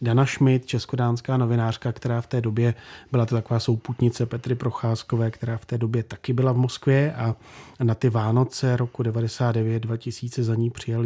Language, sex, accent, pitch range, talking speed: Czech, male, native, 115-130 Hz, 165 wpm